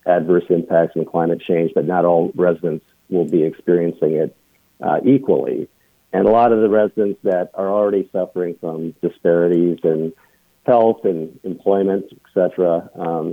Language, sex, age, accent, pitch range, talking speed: English, male, 50-69, American, 85-95 Hz, 155 wpm